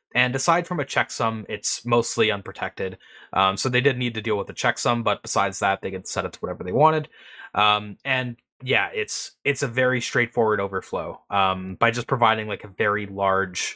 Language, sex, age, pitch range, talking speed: English, male, 20-39, 100-140 Hz, 200 wpm